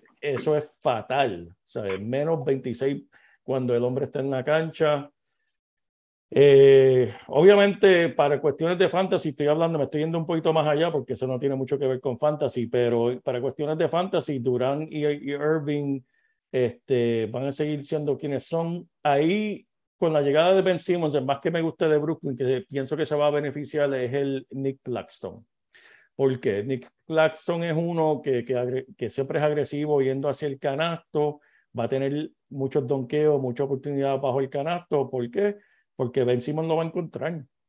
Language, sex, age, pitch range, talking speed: Spanish, male, 50-69, 130-155 Hz, 185 wpm